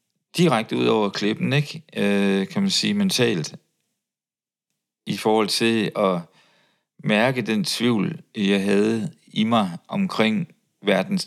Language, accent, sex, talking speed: Danish, native, male, 115 wpm